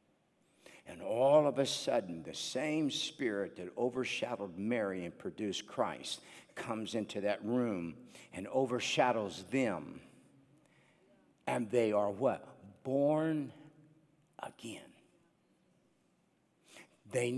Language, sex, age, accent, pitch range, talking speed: English, male, 60-79, American, 105-135 Hz, 95 wpm